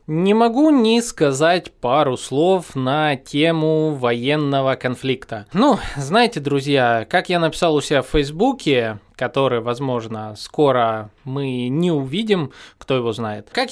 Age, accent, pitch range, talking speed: 20-39, native, 130-170 Hz, 130 wpm